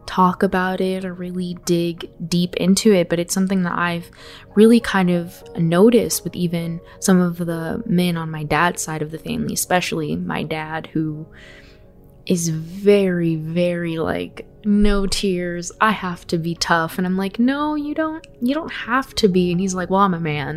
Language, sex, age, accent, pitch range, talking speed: English, female, 20-39, American, 175-230 Hz, 185 wpm